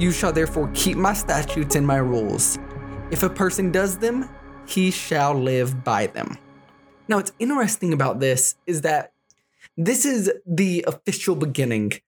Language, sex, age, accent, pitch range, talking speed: English, male, 20-39, American, 135-190 Hz, 155 wpm